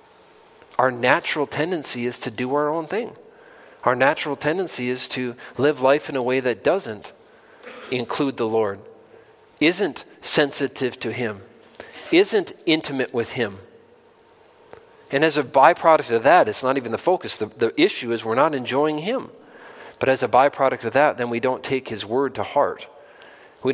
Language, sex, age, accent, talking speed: English, male, 40-59, American, 165 wpm